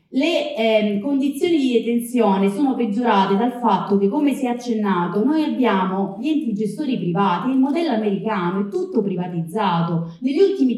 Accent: native